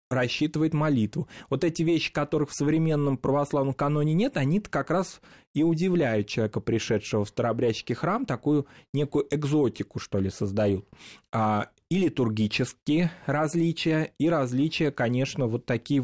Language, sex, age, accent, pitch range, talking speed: Russian, male, 20-39, native, 120-160 Hz, 130 wpm